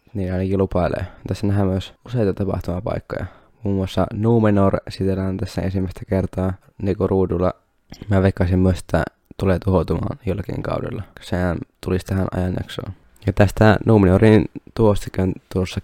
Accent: native